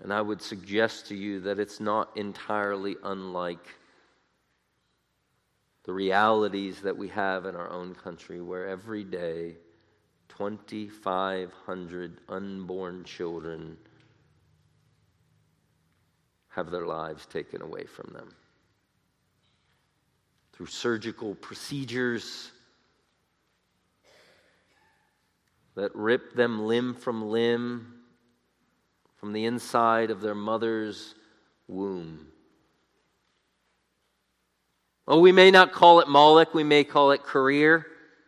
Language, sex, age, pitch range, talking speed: English, male, 40-59, 95-145 Hz, 95 wpm